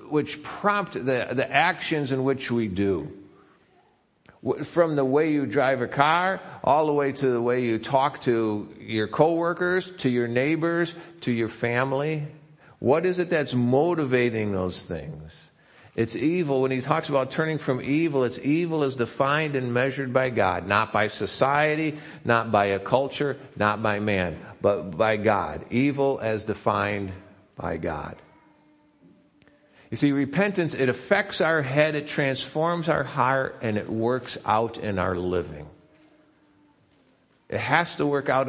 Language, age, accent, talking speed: English, 50-69, American, 150 wpm